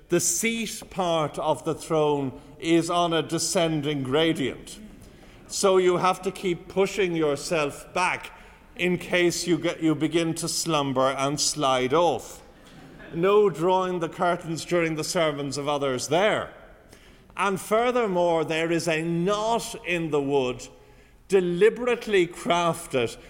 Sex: male